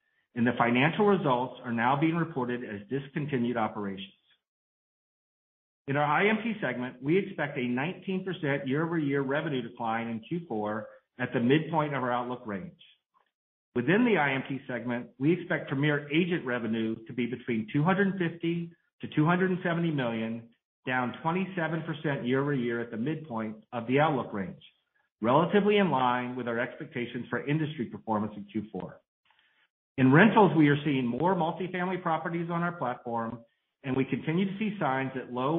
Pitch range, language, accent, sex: 120-165 Hz, English, American, male